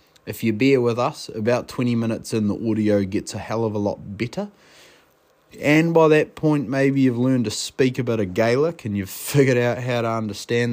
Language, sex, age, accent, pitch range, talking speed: English, male, 20-39, Australian, 100-125 Hz, 215 wpm